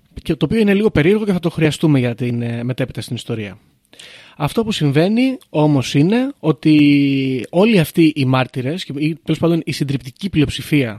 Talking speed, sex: 165 wpm, male